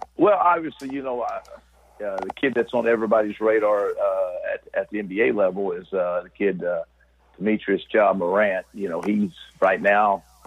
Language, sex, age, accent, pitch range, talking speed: English, male, 50-69, American, 90-110 Hz, 180 wpm